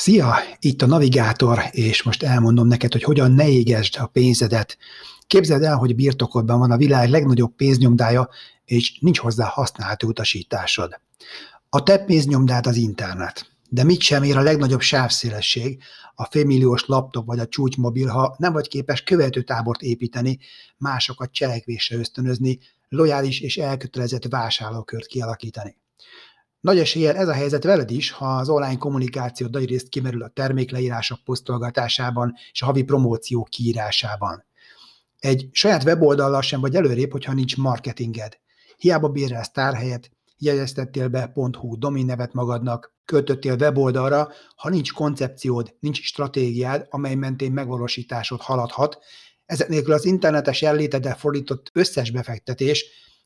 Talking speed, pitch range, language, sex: 135 wpm, 120-145 Hz, Hungarian, male